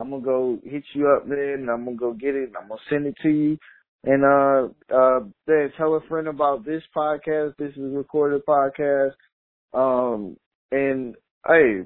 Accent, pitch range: American, 120-145 Hz